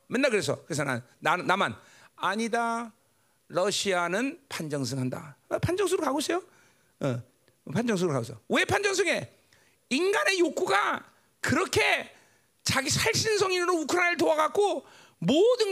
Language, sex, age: Korean, male, 40-59